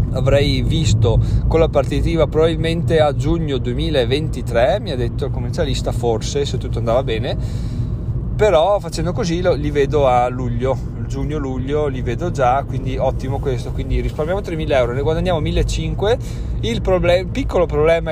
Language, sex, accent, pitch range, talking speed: Italian, male, native, 120-150 Hz, 145 wpm